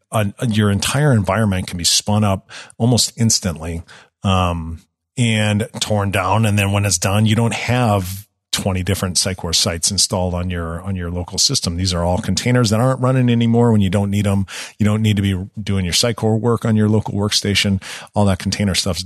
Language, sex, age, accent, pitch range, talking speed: English, male, 40-59, American, 95-115 Hz, 200 wpm